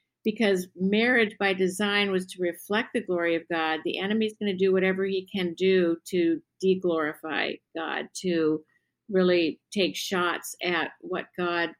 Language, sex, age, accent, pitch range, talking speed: English, female, 50-69, American, 170-205 Hz, 160 wpm